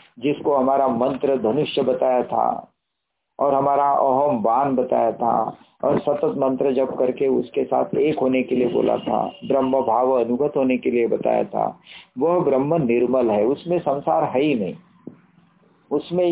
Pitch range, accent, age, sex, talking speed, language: 130-165 Hz, native, 50-69, male, 160 wpm, Hindi